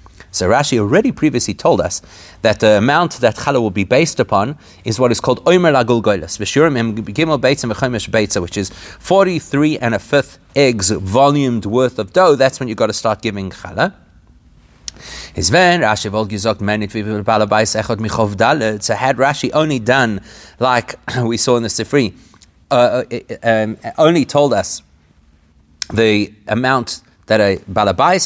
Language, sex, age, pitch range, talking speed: English, male, 30-49, 105-135 Hz, 135 wpm